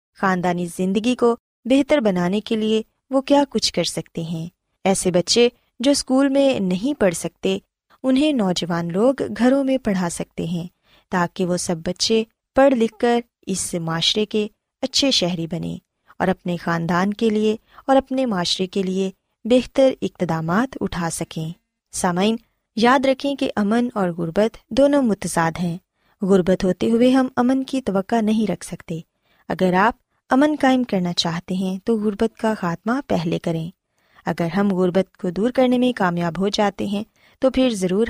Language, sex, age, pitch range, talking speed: Urdu, female, 20-39, 180-250 Hz, 160 wpm